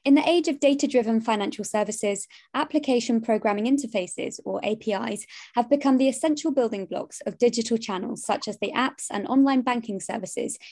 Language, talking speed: English, 160 wpm